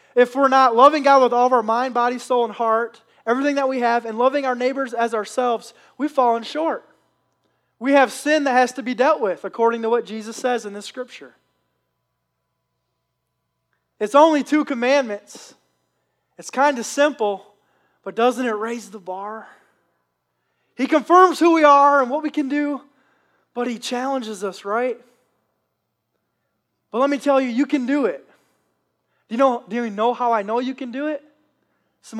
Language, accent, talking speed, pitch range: English, American, 175 wpm, 230-275 Hz